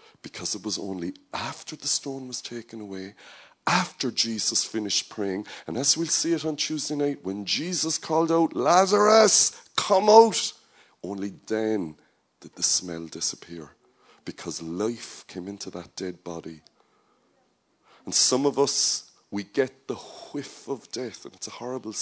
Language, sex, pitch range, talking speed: English, male, 90-125 Hz, 155 wpm